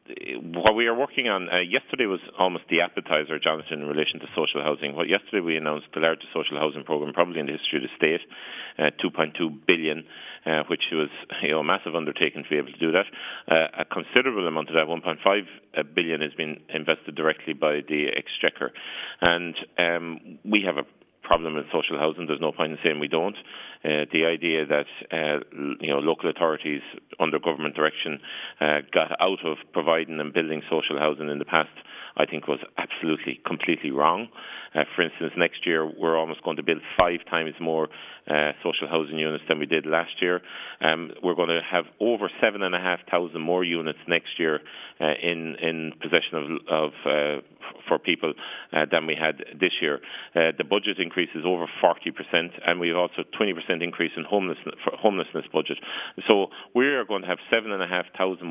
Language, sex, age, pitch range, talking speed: English, male, 40-59, 75-85 Hz, 190 wpm